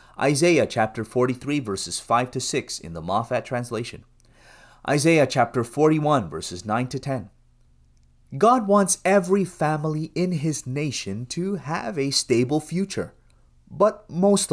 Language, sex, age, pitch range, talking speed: English, male, 30-49, 115-165 Hz, 130 wpm